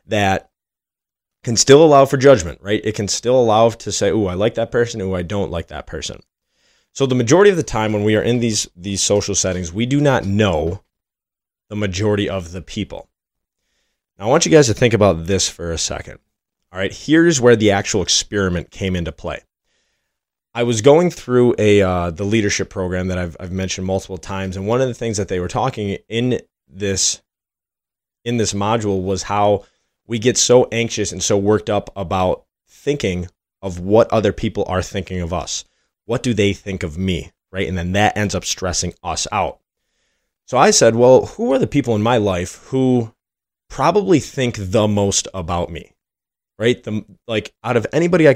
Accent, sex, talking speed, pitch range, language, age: American, male, 195 wpm, 95-120 Hz, English, 20-39